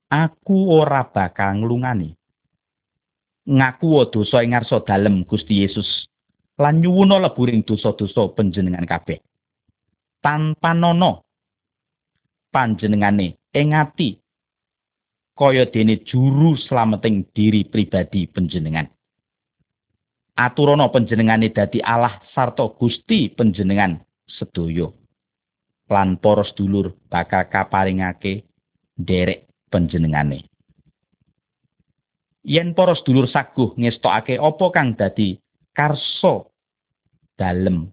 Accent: native